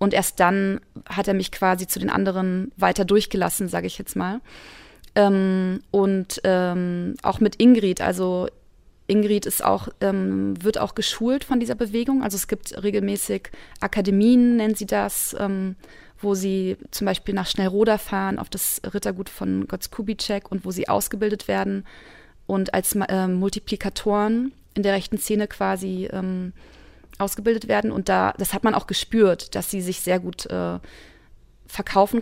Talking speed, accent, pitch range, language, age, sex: 160 wpm, German, 190-210 Hz, German, 30-49, female